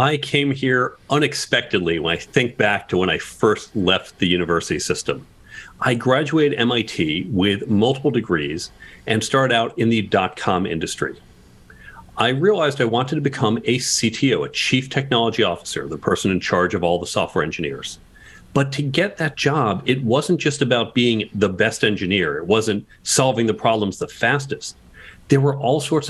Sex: male